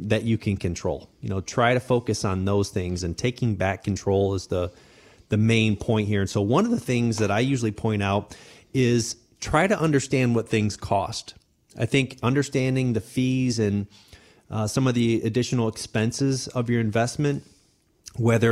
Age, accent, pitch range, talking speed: 30-49, American, 100-120 Hz, 180 wpm